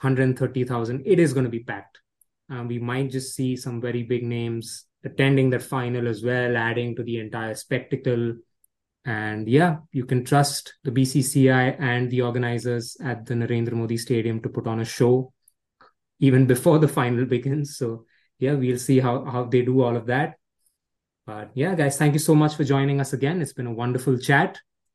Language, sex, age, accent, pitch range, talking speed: English, male, 20-39, Indian, 120-135 Hz, 190 wpm